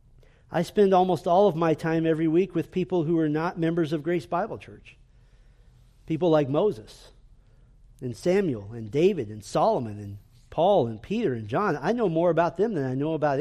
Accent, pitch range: American, 130-200 Hz